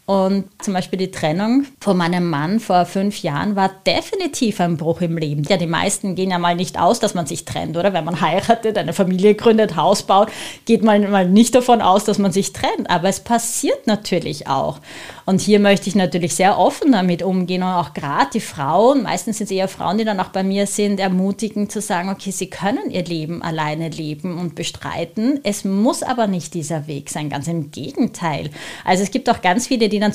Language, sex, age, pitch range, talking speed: German, female, 30-49, 170-210 Hz, 215 wpm